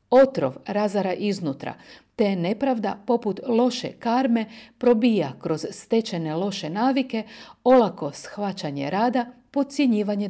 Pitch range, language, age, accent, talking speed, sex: 185-245 Hz, Croatian, 50-69, native, 100 wpm, female